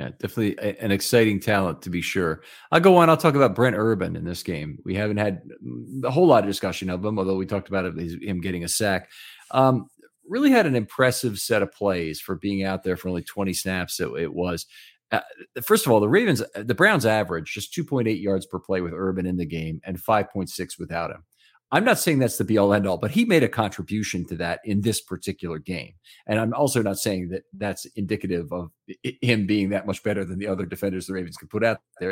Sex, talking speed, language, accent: male, 225 wpm, English, American